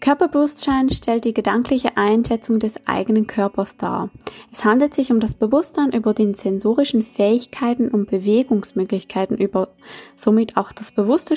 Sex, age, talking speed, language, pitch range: female, 20-39, 135 wpm, German, 210-255 Hz